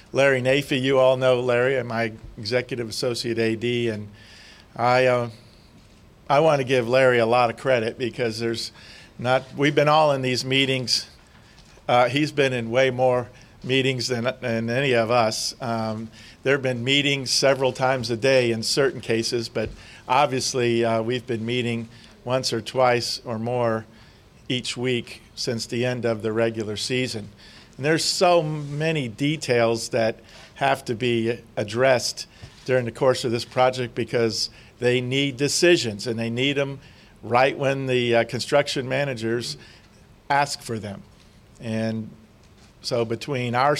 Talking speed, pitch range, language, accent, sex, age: 155 wpm, 115-135 Hz, English, American, male, 50-69